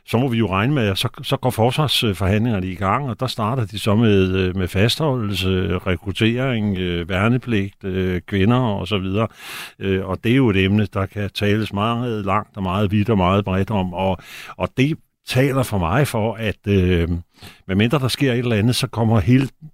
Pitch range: 100-120 Hz